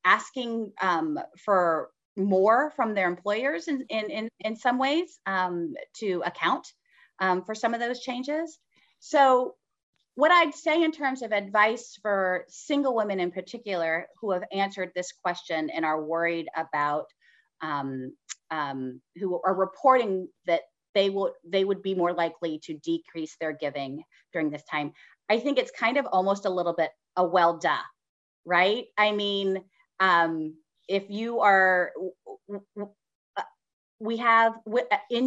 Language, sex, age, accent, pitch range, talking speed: English, female, 30-49, American, 175-245 Hz, 145 wpm